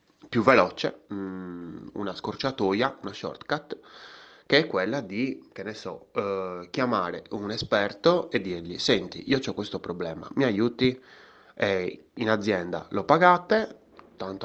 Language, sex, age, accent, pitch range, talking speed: Italian, male, 20-39, native, 95-110 Hz, 135 wpm